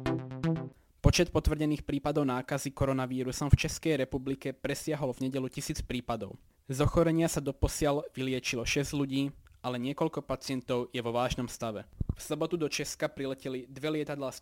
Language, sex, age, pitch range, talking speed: Slovak, male, 20-39, 125-145 Hz, 145 wpm